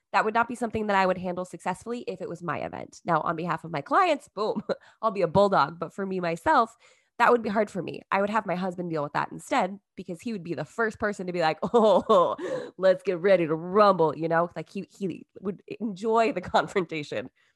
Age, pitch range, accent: 20-39, 165-220 Hz, American